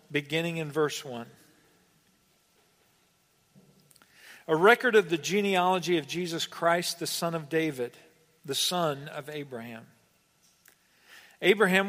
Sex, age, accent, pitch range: male, 50-69, American, 140-160 Hz